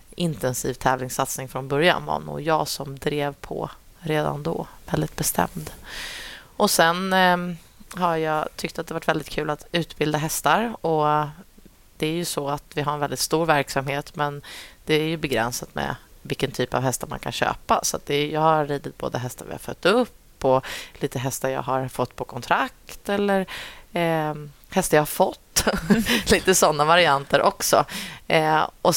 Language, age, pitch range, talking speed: Swedish, 30-49, 135-165 Hz, 180 wpm